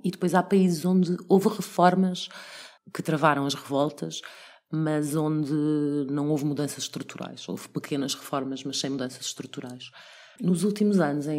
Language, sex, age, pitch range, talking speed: Portuguese, female, 30-49, 140-175 Hz, 150 wpm